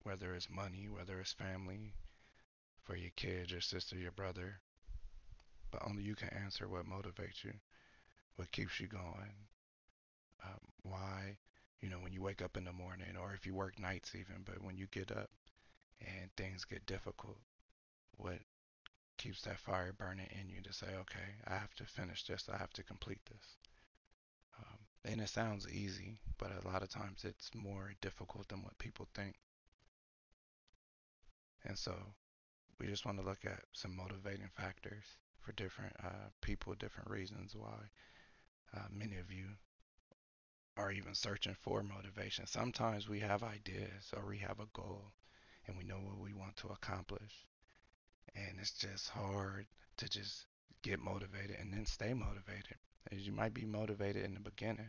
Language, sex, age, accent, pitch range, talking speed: English, male, 30-49, American, 95-105 Hz, 165 wpm